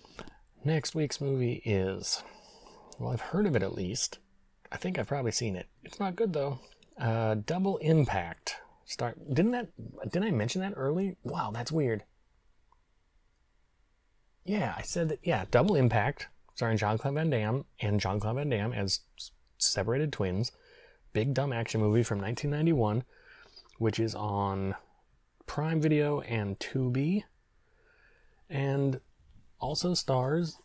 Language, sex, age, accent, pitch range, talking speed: English, male, 30-49, American, 100-145 Hz, 140 wpm